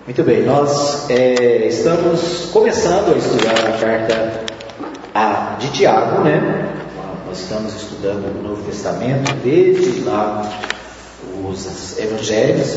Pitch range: 110-145 Hz